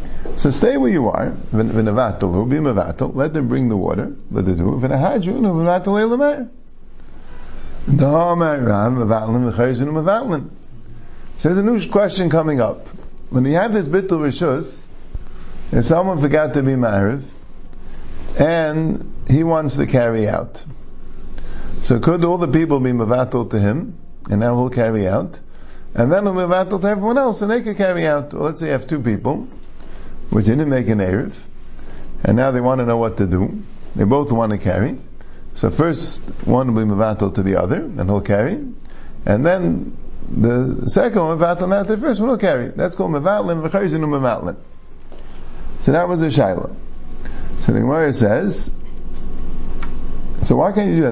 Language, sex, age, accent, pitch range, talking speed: English, male, 50-69, American, 105-165 Hz, 155 wpm